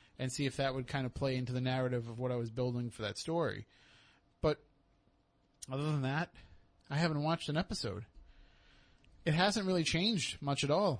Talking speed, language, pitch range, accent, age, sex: 190 wpm, English, 125-150 Hz, American, 20-39, male